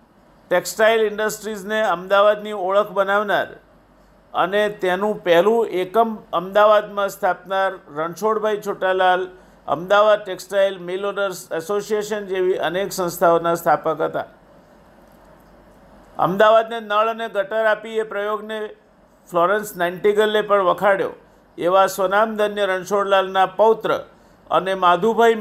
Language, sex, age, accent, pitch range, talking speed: Gujarati, male, 50-69, native, 180-210 Hz, 95 wpm